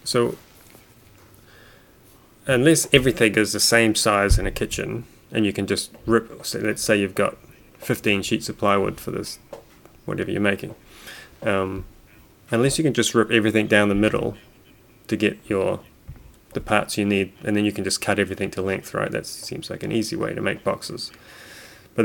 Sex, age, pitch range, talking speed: male, 20-39, 100-115 Hz, 175 wpm